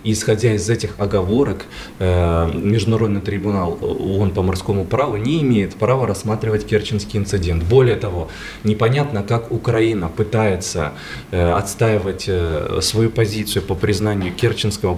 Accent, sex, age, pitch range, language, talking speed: native, male, 20-39, 100-125 Hz, Russian, 110 wpm